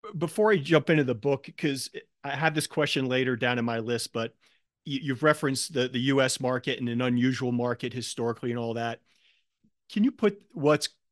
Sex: male